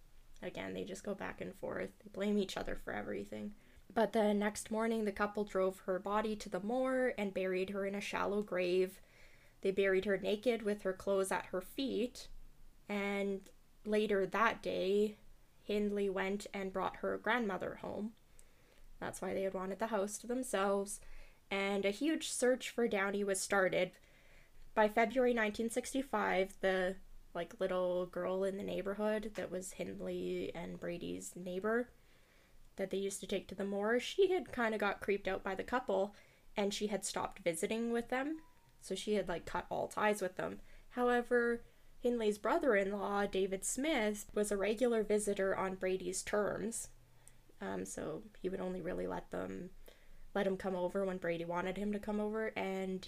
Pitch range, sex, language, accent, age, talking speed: 190-215 Hz, female, English, American, 10-29, 170 wpm